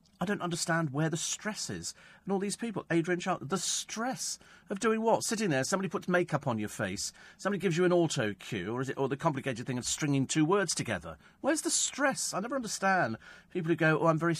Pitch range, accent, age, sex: 115-175 Hz, British, 40-59, male